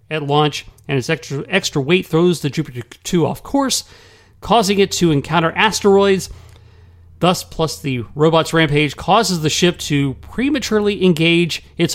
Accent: American